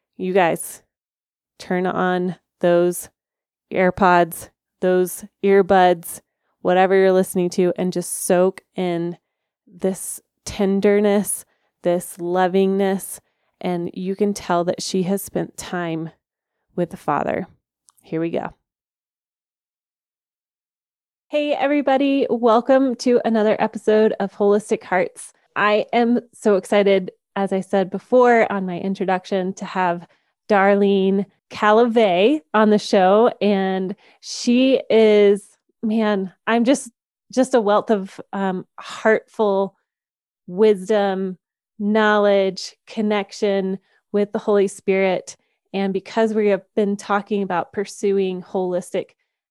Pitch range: 185-215 Hz